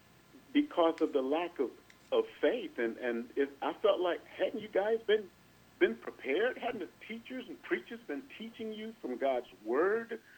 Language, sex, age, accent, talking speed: English, male, 50-69, American, 175 wpm